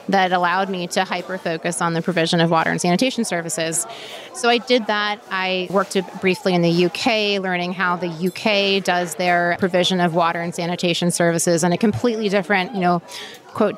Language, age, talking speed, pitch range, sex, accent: English, 30-49, 185 wpm, 175-210 Hz, female, American